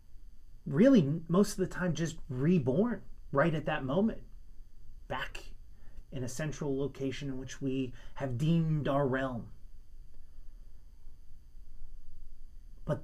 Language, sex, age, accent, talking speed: English, male, 30-49, American, 110 wpm